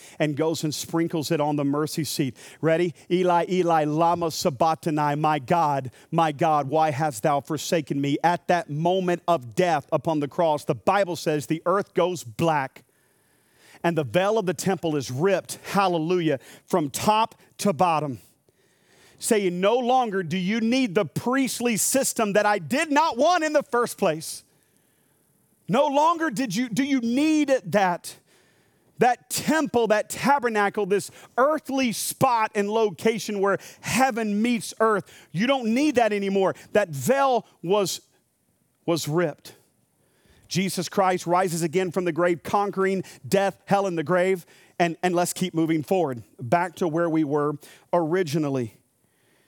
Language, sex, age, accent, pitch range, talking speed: English, male, 40-59, American, 160-205 Hz, 150 wpm